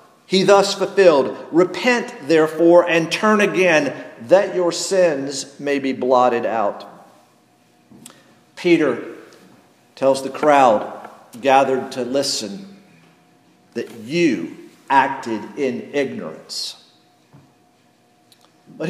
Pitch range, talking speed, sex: 155-200 Hz, 90 wpm, male